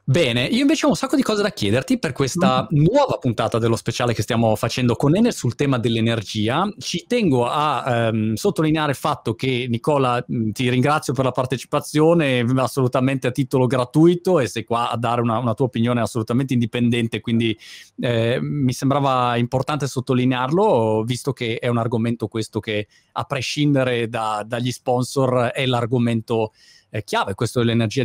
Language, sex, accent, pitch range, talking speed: Italian, male, native, 115-150 Hz, 165 wpm